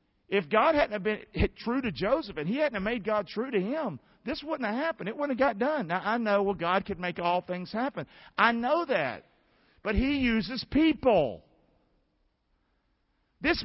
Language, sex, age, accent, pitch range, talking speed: English, male, 50-69, American, 185-255 Hz, 195 wpm